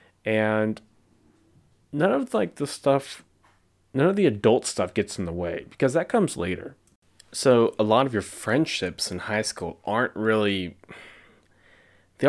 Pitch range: 90-110 Hz